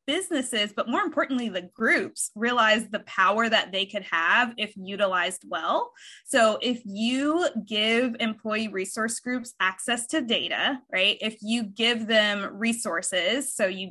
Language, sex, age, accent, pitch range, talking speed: English, female, 20-39, American, 210-265 Hz, 145 wpm